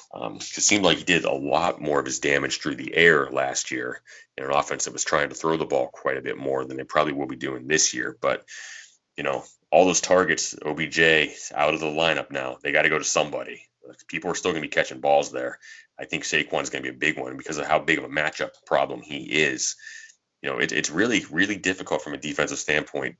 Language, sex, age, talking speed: English, male, 30-49, 250 wpm